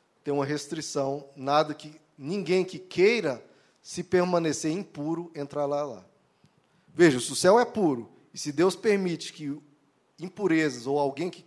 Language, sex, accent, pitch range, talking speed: Portuguese, male, Brazilian, 140-185 Hz, 140 wpm